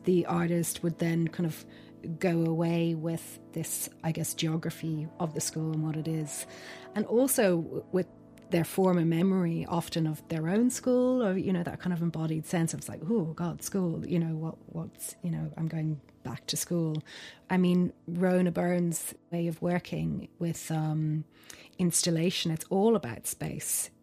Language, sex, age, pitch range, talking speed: English, female, 30-49, 160-175 Hz, 175 wpm